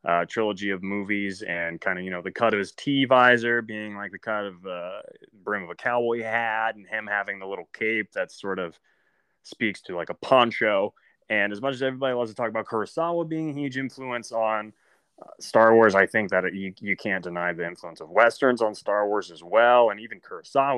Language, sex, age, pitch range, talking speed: English, male, 20-39, 100-125 Hz, 220 wpm